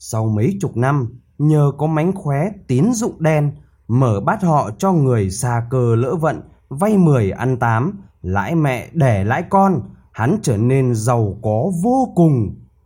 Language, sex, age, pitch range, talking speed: Vietnamese, male, 20-39, 110-170 Hz, 170 wpm